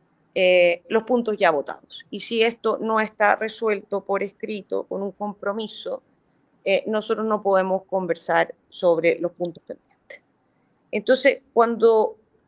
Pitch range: 185-225 Hz